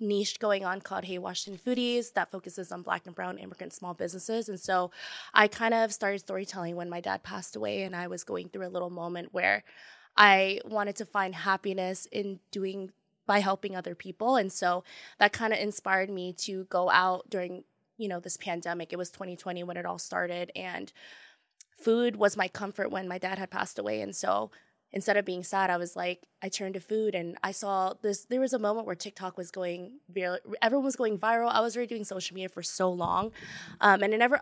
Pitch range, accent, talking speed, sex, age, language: 185-220 Hz, American, 215 wpm, female, 20-39, English